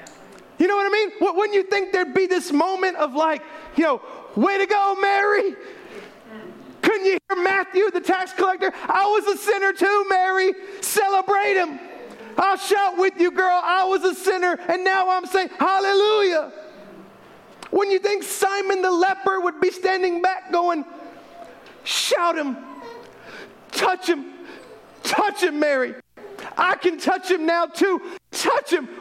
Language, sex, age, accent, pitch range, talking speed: English, male, 40-59, American, 335-390 Hz, 155 wpm